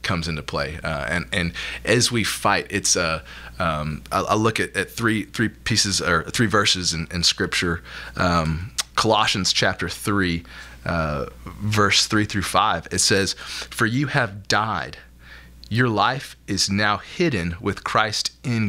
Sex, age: male, 20-39